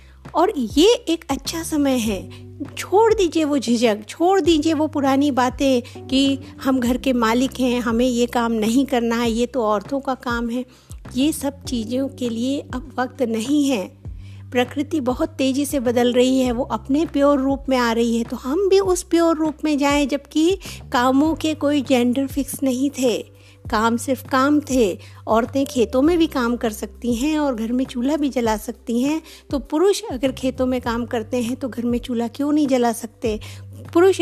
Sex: female